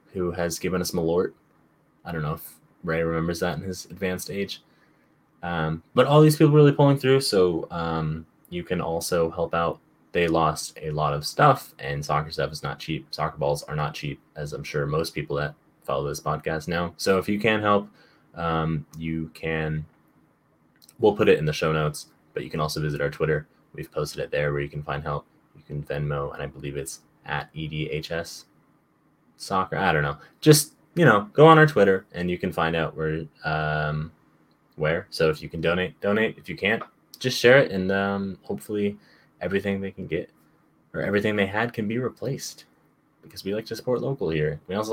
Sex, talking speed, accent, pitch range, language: male, 205 wpm, American, 75-100 Hz, English